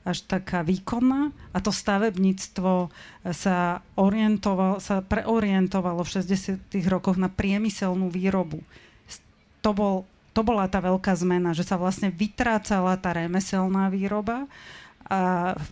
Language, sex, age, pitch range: Slovak, female, 30-49, 175-205 Hz